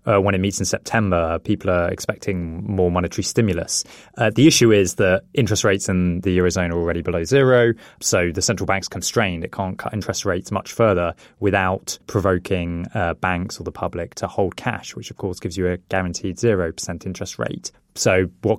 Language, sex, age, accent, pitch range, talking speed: English, male, 20-39, British, 90-110 Hz, 195 wpm